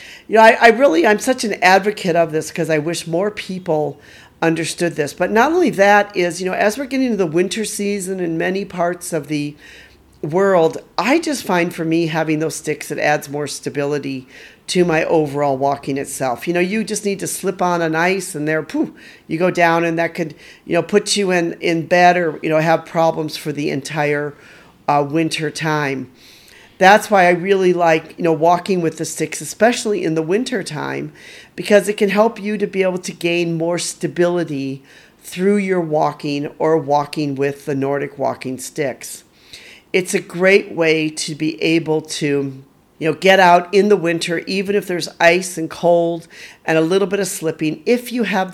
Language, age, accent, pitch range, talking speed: English, 50-69, American, 155-190 Hz, 200 wpm